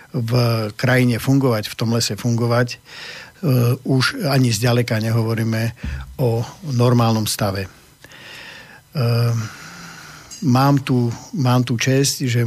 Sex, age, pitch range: male, 50-69, 115-130 Hz